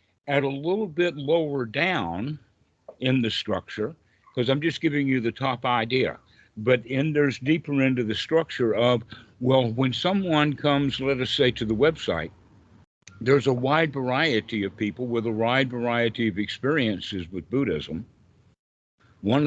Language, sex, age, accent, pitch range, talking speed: English, male, 60-79, American, 110-135 Hz, 155 wpm